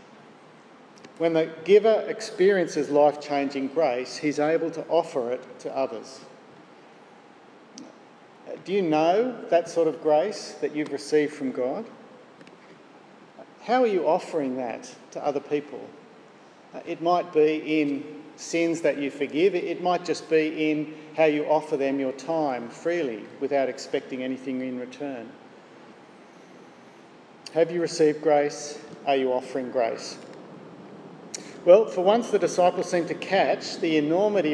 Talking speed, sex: 130 wpm, male